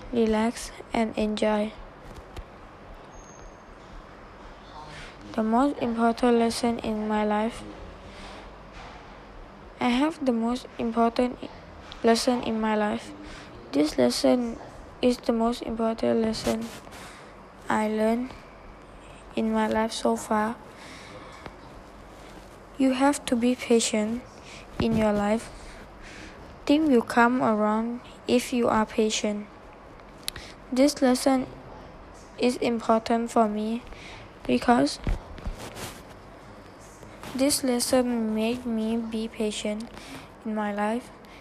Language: English